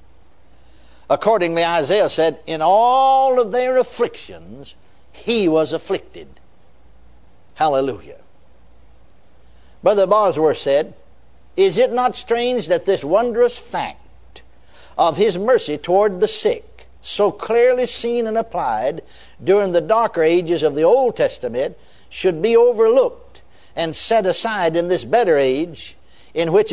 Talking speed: 120 wpm